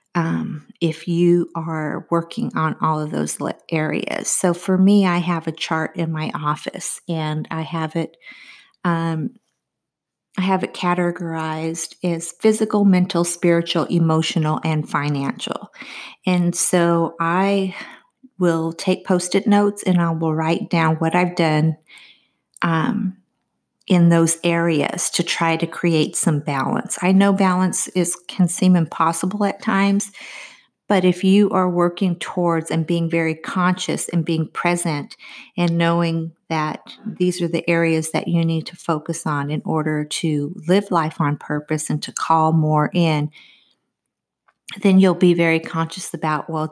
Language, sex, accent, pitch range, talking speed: English, female, American, 160-190 Hz, 150 wpm